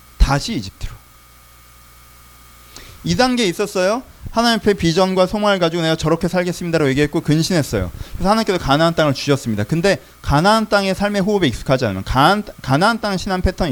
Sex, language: male, Korean